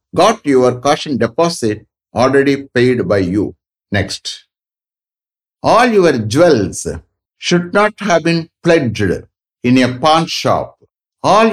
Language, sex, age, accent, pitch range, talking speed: English, male, 60-79, Indian, 120-165 Hz, 115 wpm